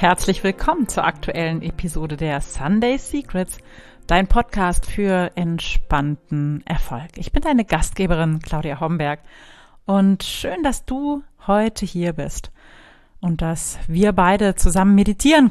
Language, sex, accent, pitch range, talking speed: German, female, German, 160-195 Hz, 125 wpm